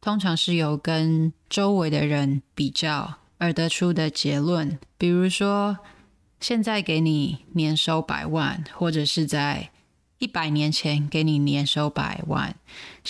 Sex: female